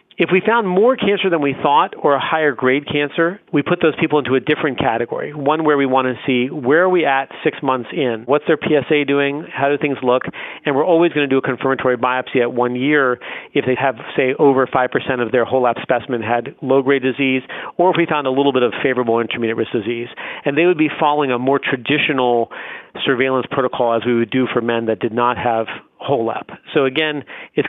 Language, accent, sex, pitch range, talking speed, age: English, American, male, 125-150 Hz, 230 wpm, 40-59